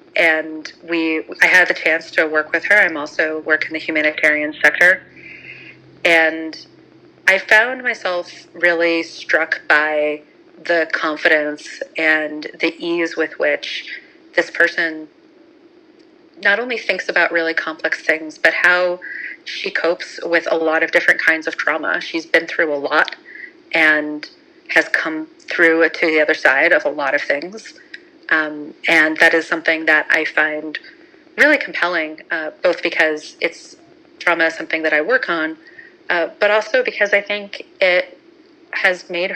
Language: English